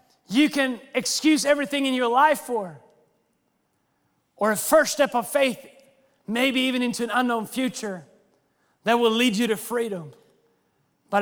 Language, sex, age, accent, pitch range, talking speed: English, male, 30-49, American, 180-235 Hz, 145 wpm